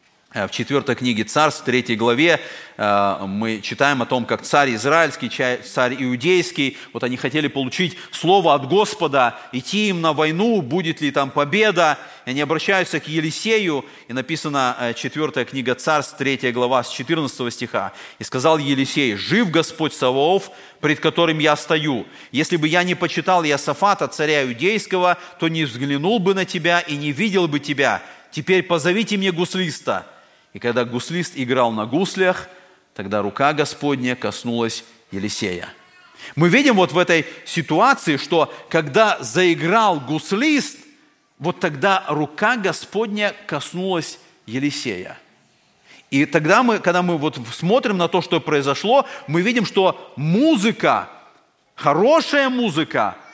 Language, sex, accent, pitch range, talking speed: Russian, male, native, 135-185 Hz, 135 wpm